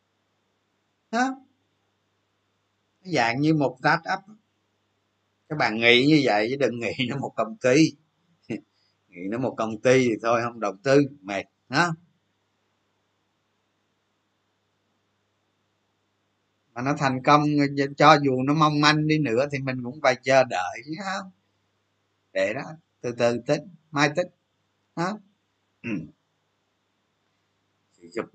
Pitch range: 100-145 Hz